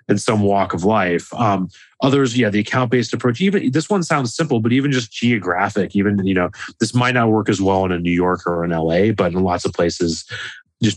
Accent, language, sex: American, English, male